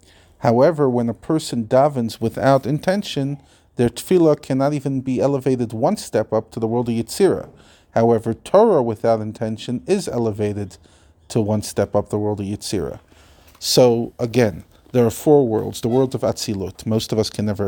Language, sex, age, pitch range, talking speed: English, male, 40-59, 105-130 Hz, 170 wpm